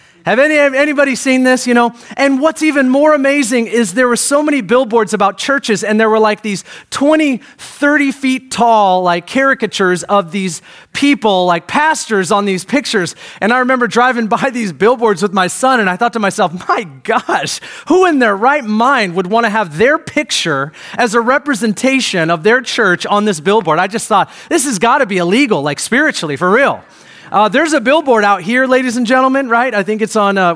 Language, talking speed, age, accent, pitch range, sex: English, 205 wpm, 30-49, American, 185-255 Hz, male